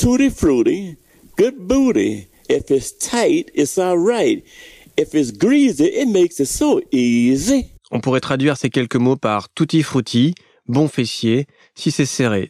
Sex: male